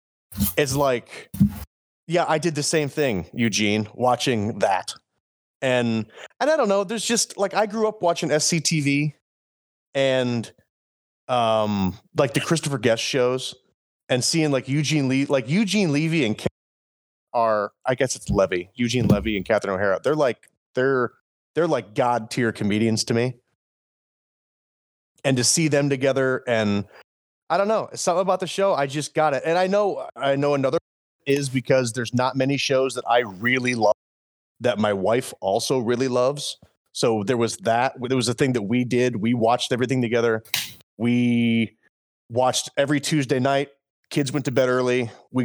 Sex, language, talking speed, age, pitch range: male, English, 165 wpm, 30-49, 115-145 Hz